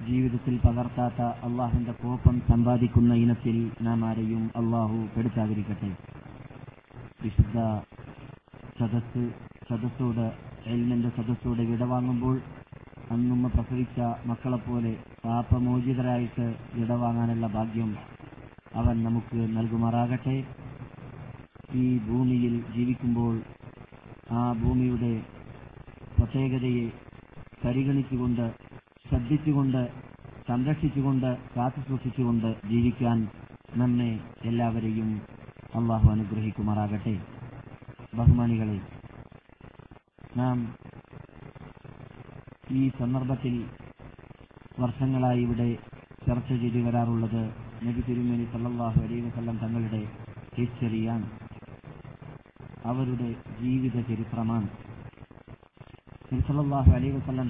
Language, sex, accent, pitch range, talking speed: Malayalam, male, native, 115-125 Hz, 50 wpm